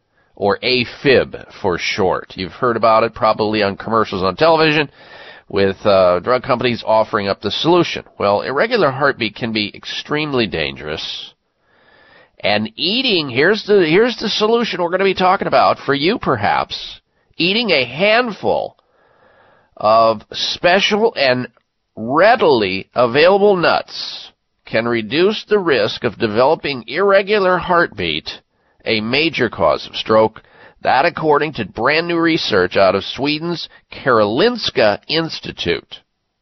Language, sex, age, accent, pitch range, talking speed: English, male, 40-59, American, 110-185 Hz, 125 wpm